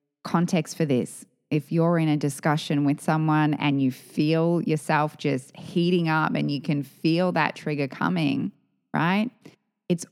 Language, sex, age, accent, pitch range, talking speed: English, female, 20-39, Australian, 145-180 Hz, 155 wpm